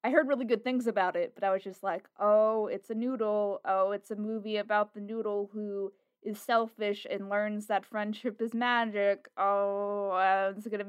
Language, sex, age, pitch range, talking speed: English, female, 20-39, 185-225 Hz, 200 wpm